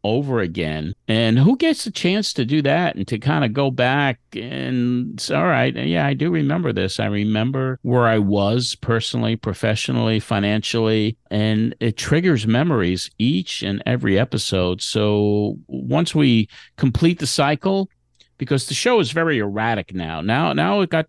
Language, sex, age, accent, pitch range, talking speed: English, male, 50-69, American, 105-135 Hz, 160 wpm